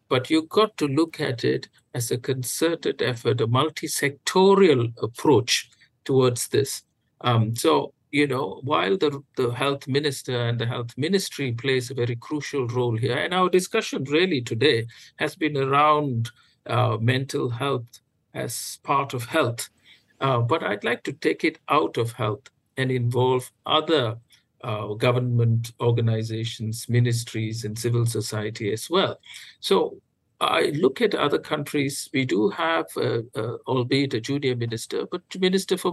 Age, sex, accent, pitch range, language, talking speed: 50-69, male, Indian, 120-145 Hz, English, 150 wpm